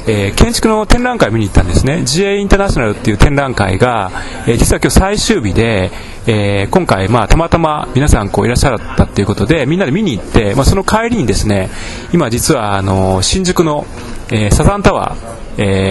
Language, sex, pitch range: Japanese, male, 100-160 Hz